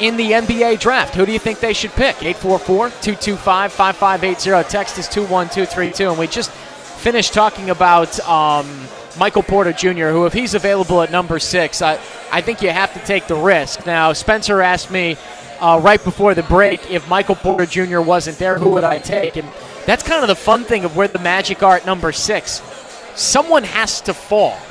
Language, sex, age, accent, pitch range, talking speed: English, male, 20-39, American, 180-215 Hz, 200 wpm